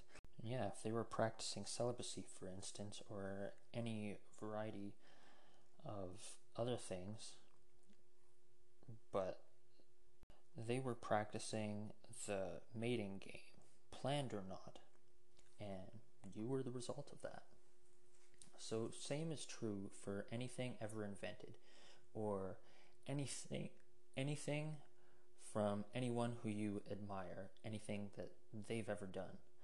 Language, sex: English, male